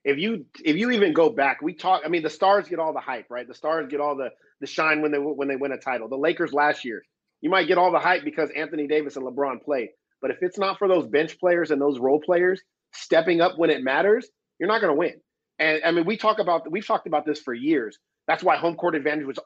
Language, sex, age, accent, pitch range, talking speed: English, male, 30-49, American, 145-180 Hz, 270 wpm